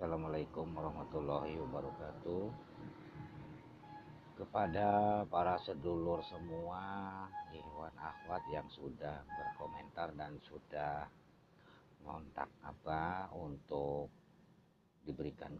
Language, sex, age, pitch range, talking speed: Malay, male, 50-69, 85-115 Hz, 70 wpm